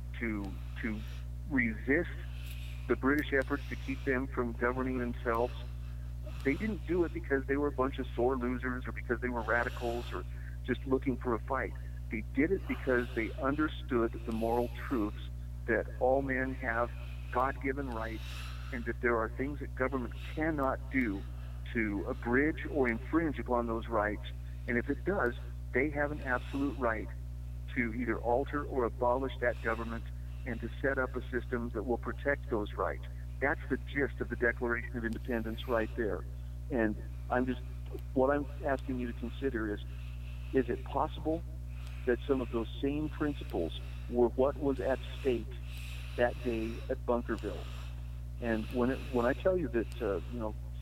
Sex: male